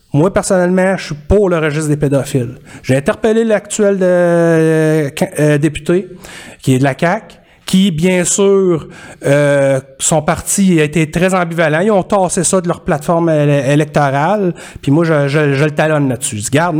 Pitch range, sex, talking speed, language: 145-185 Hz, male, 180 wpm, French